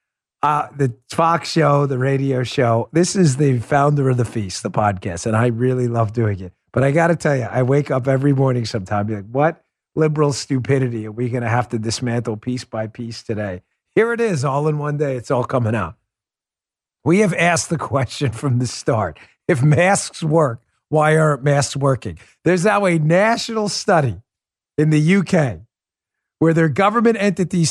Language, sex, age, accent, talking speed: English, male, 40-59, American, 190 wpm